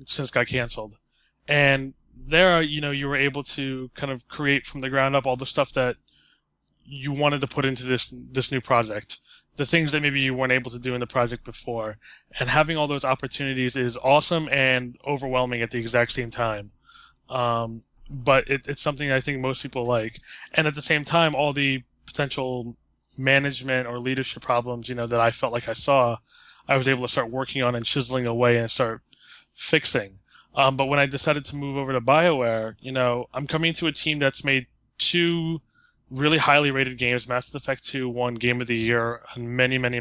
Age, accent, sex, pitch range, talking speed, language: 20-39, American, male, 120-140 Hz, 200 wpm, English